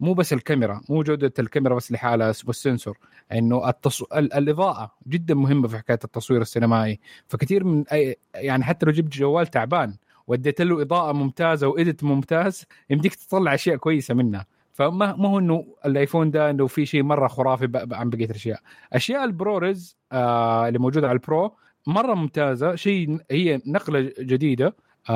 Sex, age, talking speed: male, 30-49, 170 wpm